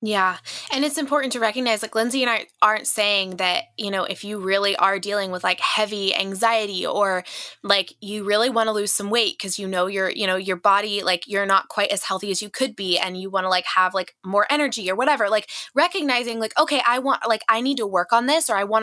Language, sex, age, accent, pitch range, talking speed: English, female, 20-39, American, 200-250 Hz, 250 wpm